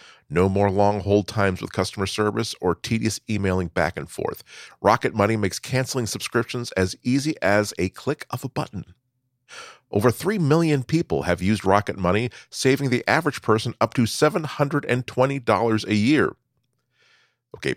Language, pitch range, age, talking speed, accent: English, 95-125 Hz, 40-59, 165 wpm, American